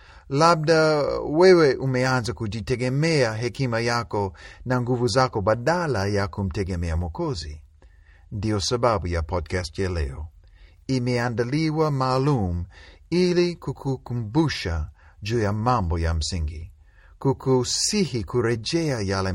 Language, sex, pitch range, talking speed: Swahili, male, 80-130 Hz, 95 wpm